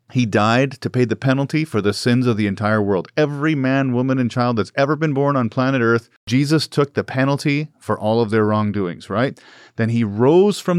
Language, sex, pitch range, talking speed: English, male, 120-170 Hz, 215 wpm